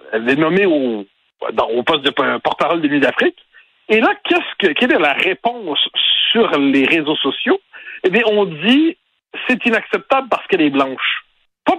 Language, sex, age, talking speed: French, male, 60-79, 175 wpm